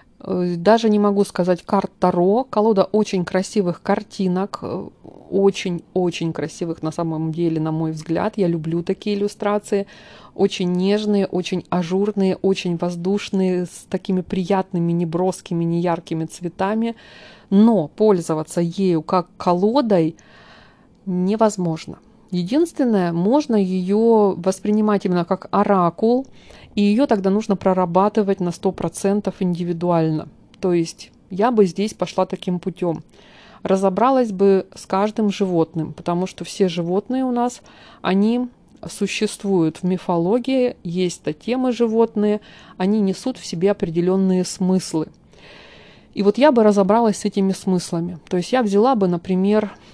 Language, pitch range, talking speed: Russian, 175-210 Hz, 125 wpm